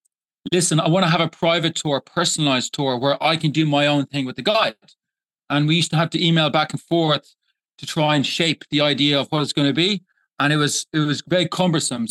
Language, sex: English, male